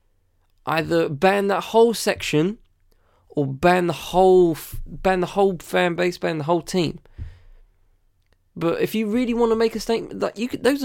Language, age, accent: English, 20-39, British